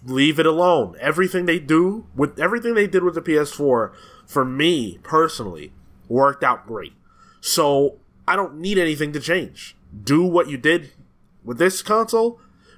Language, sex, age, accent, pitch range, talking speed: English, male, 20-39, American, 125-180 Hz, 155 wpm